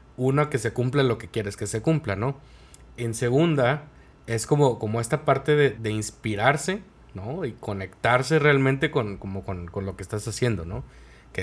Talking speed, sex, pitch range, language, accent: 185 wpm, male, 110-140 Hz, Spanish, Mexican